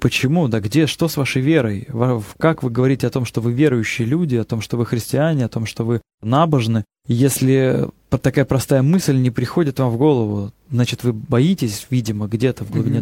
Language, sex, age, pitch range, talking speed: Russian, male, 20-39, 115-135 Hz, 195 wpm